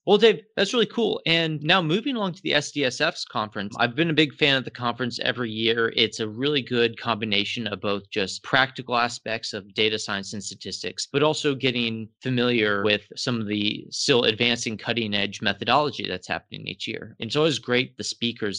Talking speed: 195 wpm